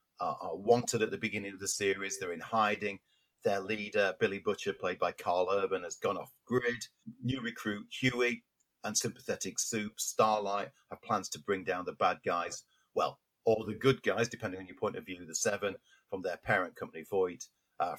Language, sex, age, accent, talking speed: English, male, 40-59, British, 190 wpm